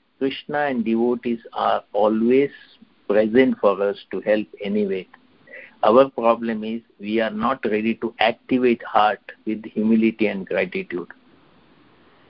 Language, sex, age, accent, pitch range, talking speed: English, male, 60-79, Indian, 110-125 Hz, 120 wpm